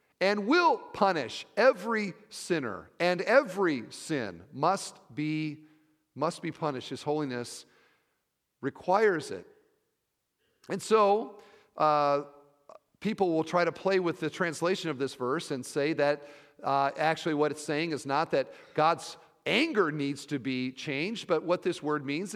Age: 50-69